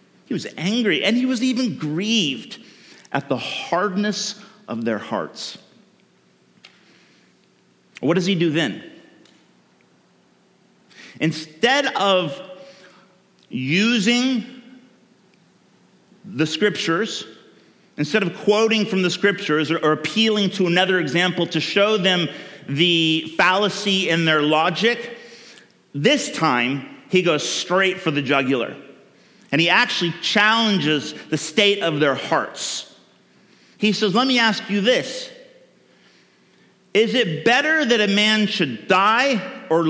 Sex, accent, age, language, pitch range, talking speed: male, American, 40-59, English, 150-210 Hz, 115 wpm